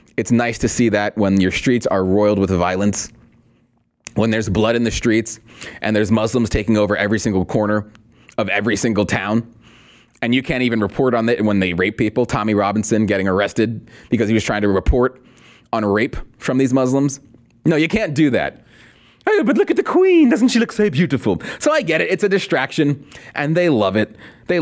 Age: 30-49